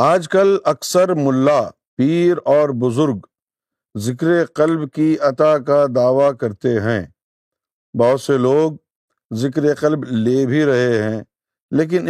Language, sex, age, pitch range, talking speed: Urdu, male, 50-69, 125-160 Hz, 125 wpm